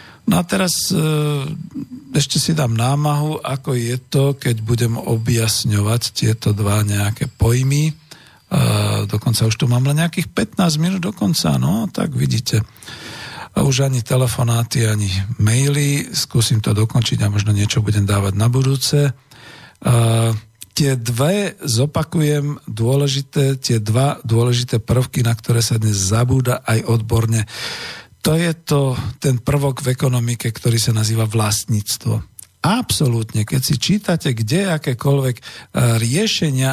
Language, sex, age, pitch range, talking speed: Slovak, male, 50-69, 115-145 Hz, 130 wpm